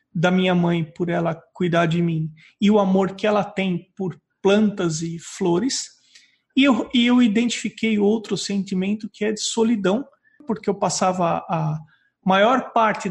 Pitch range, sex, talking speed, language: 190-245 Hz, male, 160 wpm, Portuguese